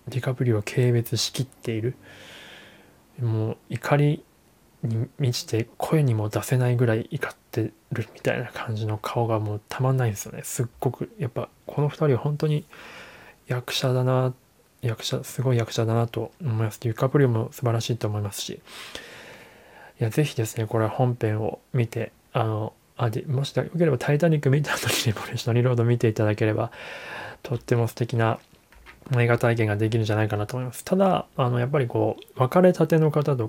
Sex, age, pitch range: male, 20-39, 110-135 Hz